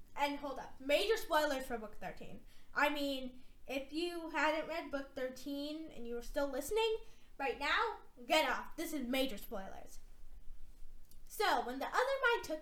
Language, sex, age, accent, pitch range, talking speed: English, female, 10-29, American, 235-330 Hz, 165 wpm